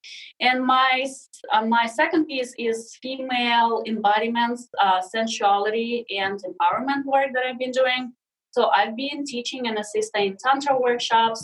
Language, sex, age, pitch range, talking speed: English, female, 20-39, 200-250 Hz, 135 wpm